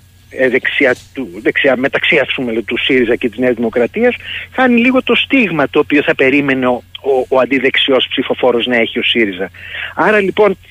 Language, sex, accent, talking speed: Greek, male, native, 155 wpm